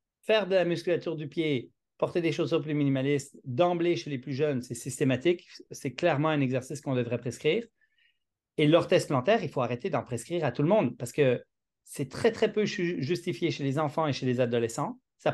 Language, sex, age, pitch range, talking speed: French, male, 40-59, 140-190 Hz, 205 wpm